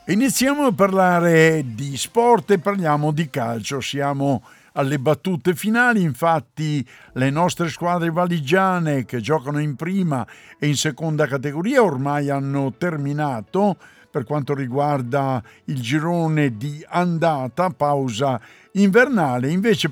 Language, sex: Italian, male